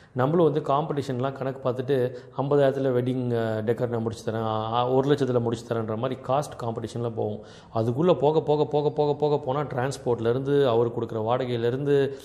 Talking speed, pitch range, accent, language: 150 wpm, 120-145 Hz, native, Tamil